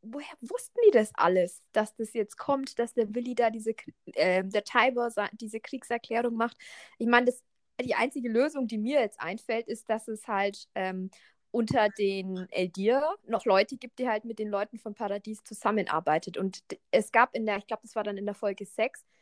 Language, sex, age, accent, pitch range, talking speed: German, female, 20-39, German, 205-245 Hz, 195 wpm